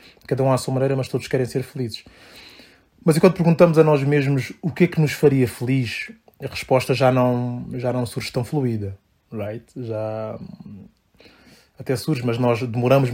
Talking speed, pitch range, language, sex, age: 180 wpm, 125-155 Hz, Portuguese, male, 20-39